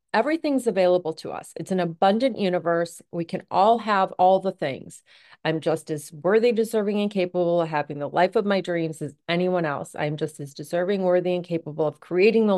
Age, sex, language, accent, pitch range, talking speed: 30-49, female, English, American, 170-195 Hz, 200 wpm